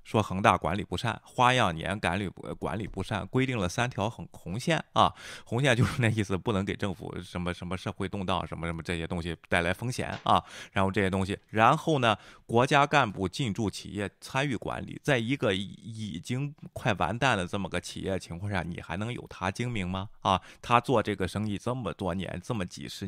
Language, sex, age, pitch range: Chinese, male, 20-39, 95-125 Hz